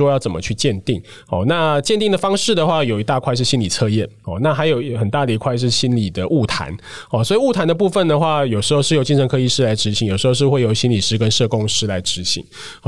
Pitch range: 115-150 Hz